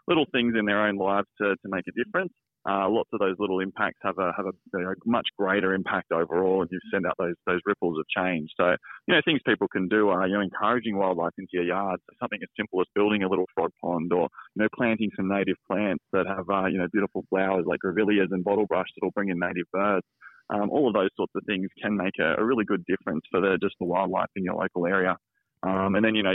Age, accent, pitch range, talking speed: 20-39, Australian, 95-105 Hz, 255 wpm